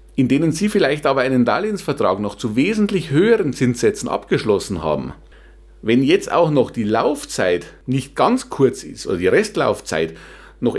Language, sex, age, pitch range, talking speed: German, male, 50-69, 125-195 Hz, 155 wpm